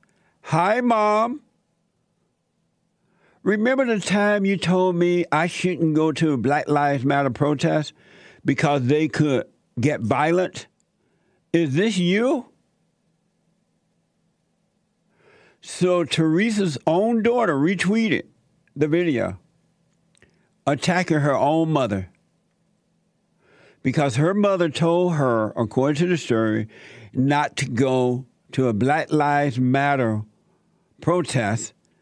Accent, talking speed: American, 105 wpm